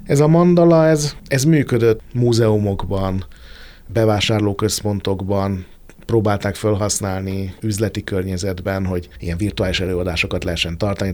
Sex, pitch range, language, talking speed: male, 95-115 Hz, Hungarian, 95 wpm